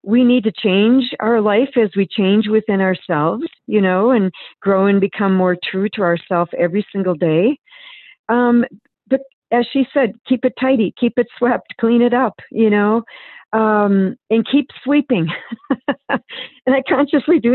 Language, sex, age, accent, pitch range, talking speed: English, female, 50-69, American, 175-235 Hz, 165 wpm